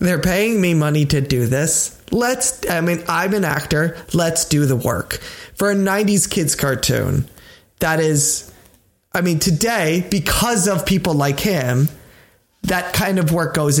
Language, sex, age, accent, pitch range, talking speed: English, male, 20-39, American, 135-175 Hz, 160 wpm